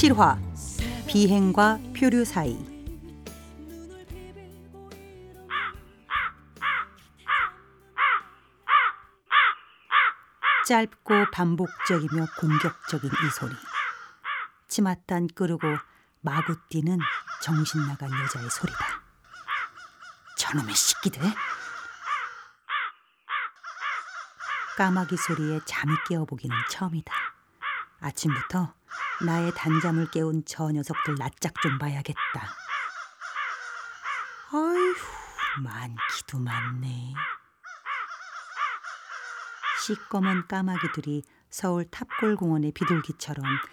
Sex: female